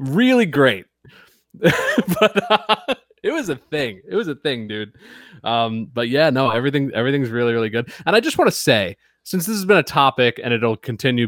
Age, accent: 30-49, American